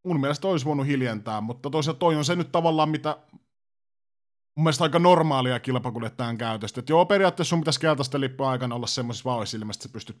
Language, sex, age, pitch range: Finnish, male, 30-49, 125-170 Hz